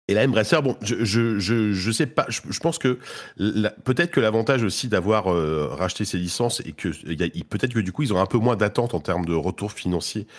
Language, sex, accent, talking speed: French, male, French, 255 wpm